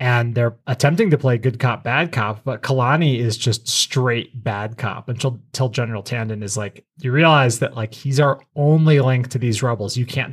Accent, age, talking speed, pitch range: American, 20-39, 200 wpm, 115-140 Hz